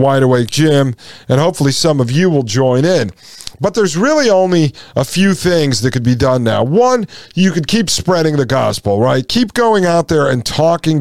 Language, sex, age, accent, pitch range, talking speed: English, male, 40-59, American, 130-165 Hz, 200 wpm